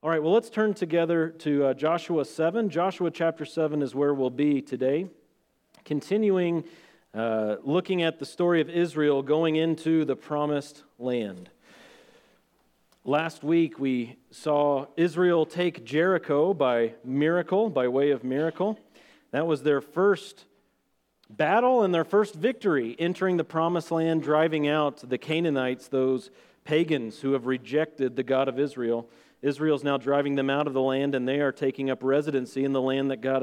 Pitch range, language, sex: 135-170 Hz, English, male